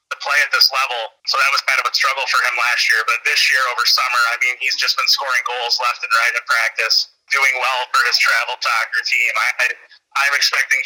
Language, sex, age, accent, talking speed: English, male, 30-49, American, 225 wpm